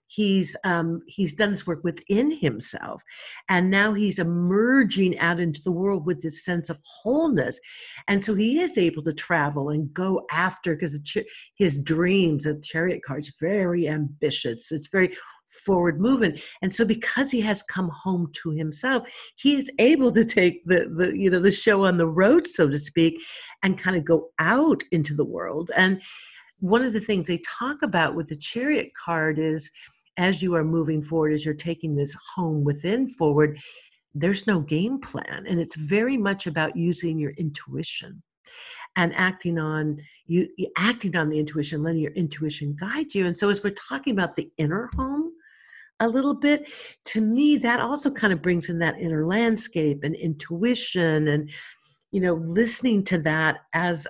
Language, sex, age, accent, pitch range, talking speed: English, female, 50-69, American, 160-215 Hz, 180 wpm